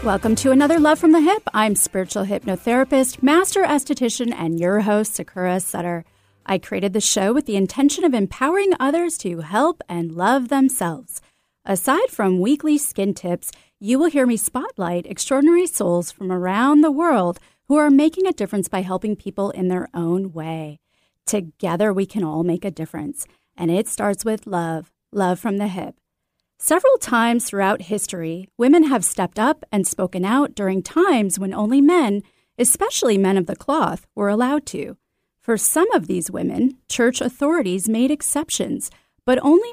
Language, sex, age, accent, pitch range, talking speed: English, female, 30-49, American, 190-280 Hz, 170 wpm